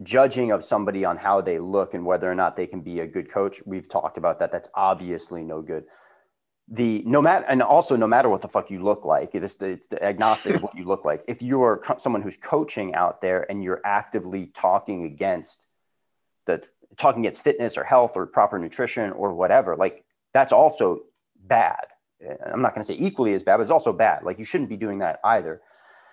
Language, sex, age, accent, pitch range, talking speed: English, male, 30-49, American, 90-115 Hz, 215 wpm